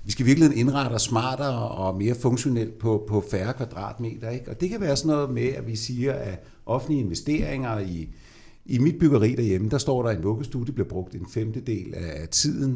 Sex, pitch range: male, 110-150 Hz